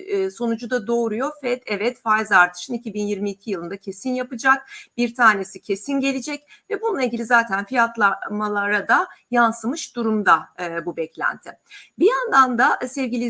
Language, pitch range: Turkish, 200-265 Hz